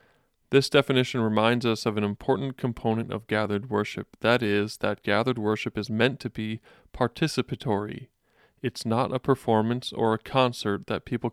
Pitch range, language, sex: 110-130 Hz, English, male